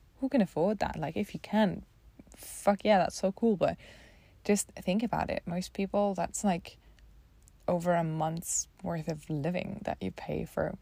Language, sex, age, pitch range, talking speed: English, female, 20-39, 155-190 Hz, 175 wpm